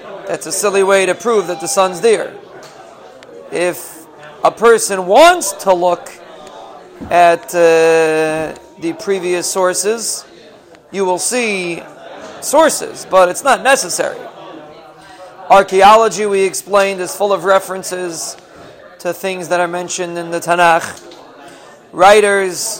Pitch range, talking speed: 175-205 Hz, 120 wpm